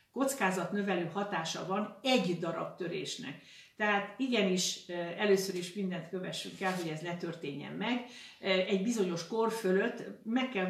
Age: 60-79